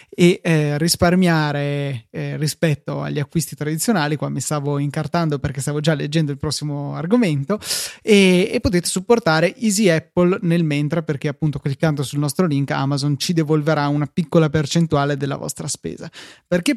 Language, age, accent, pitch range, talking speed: Italian, 20-39, native, 150-180 Hz, 155 wpm